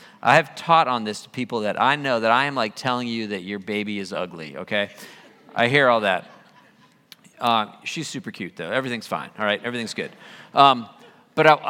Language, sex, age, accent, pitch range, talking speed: English, male, 40-59, American, 120-165 Hz, 200 wpm